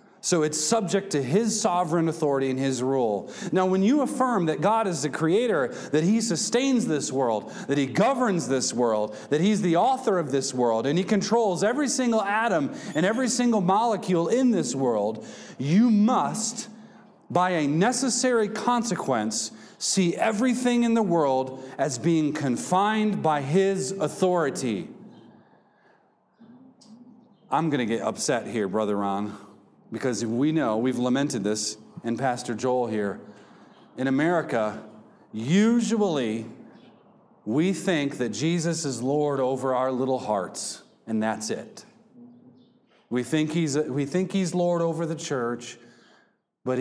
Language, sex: English, male